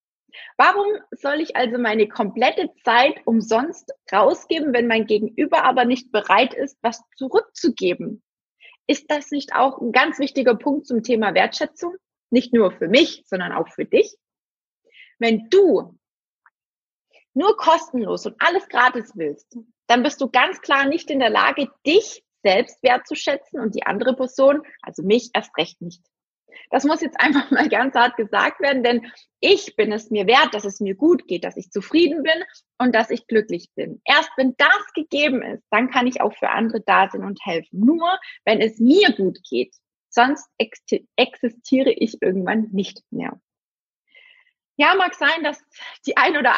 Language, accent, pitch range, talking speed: German, German, 225-310 Hz, 165 wpm